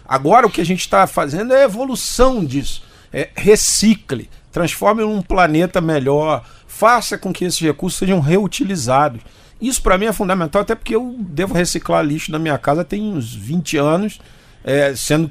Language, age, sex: Portuguese, 50-69, male